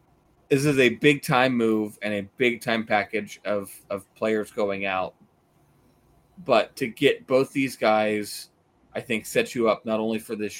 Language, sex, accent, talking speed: English, male, American, 175 wpm